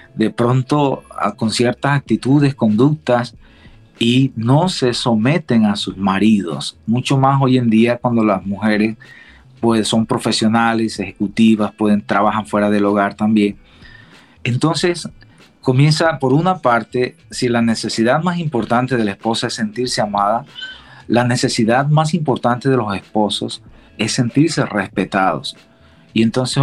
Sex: male